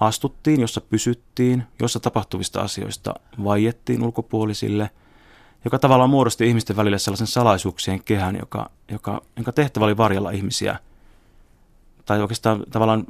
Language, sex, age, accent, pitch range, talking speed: Finnish, male, 30-49, native, 100-120 Hz, 120 wpm